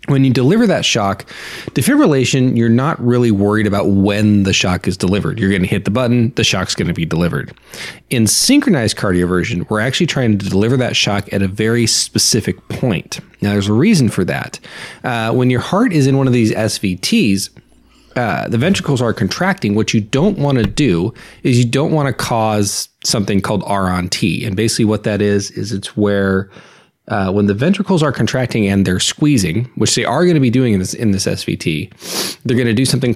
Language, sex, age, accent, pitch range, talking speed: English, male, 30-49, American, 100-130 Hz, 210 wpm